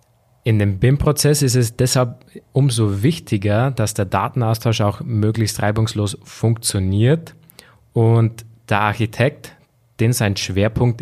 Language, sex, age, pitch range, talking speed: German, male, 20-39, 100-120 Hz, 115 wpm